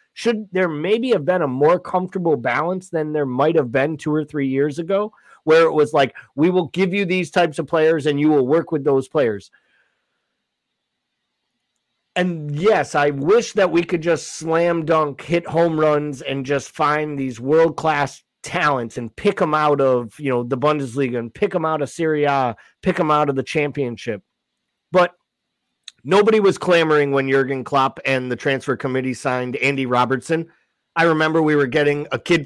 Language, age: English, 30-49